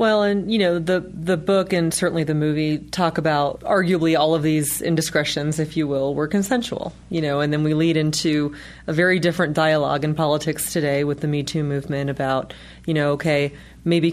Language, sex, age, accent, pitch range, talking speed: English, female, 30-49, American, 150-175 Hz, 200 wpm